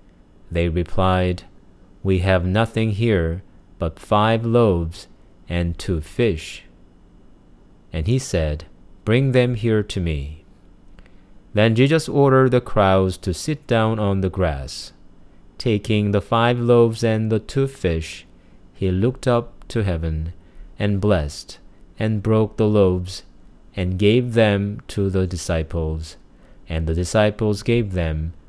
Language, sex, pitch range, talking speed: English, male, 85-115 Hz, 130 wpm